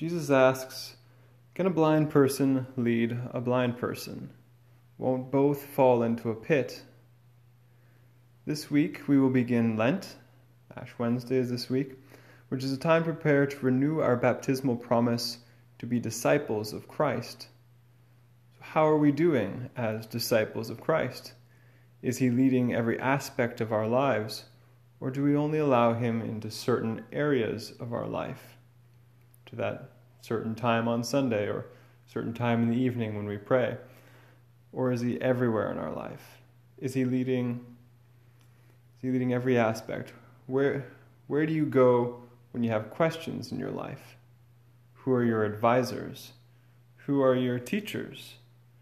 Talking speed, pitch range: 145 wpm, 120-130 Hz